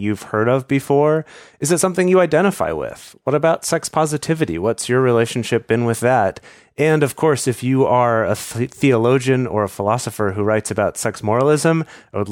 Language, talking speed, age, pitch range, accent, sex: English, 185 wpm, 30-49, 110-155 Hz, American, male